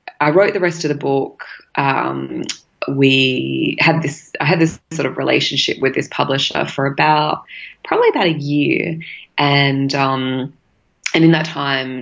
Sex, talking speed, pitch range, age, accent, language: female, 160 wpm, 130-160 Hz, 20-39, Australian, English